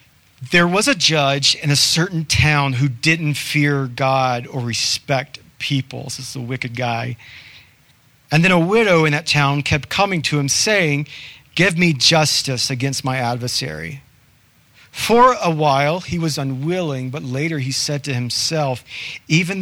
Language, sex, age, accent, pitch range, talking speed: English, male, 40-59, American, 125-150 Hz, 155 wpm